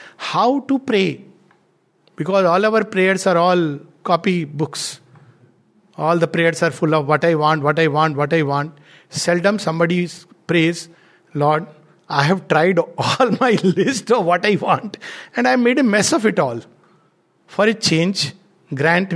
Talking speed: 165 wpm